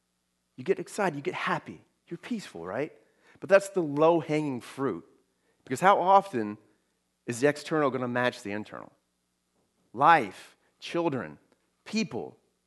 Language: English